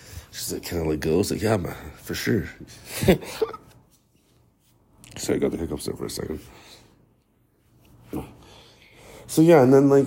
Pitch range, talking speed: 85-120 Hz, 150 wpm